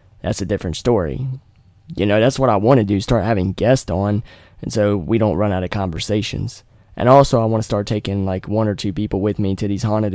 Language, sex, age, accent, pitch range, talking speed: English, male, 20-39, American, 95-110 Hz, 240 wpm